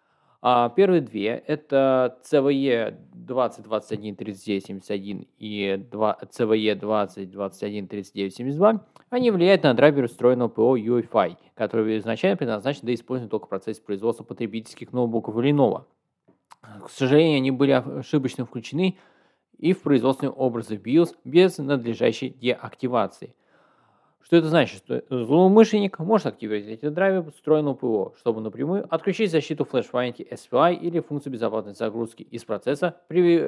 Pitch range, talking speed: 115-155 Hz, 120 wpm